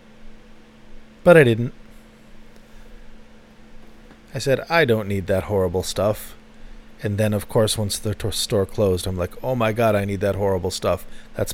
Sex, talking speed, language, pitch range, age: male, 155 wpm, English, 105-135 Hz, 40-59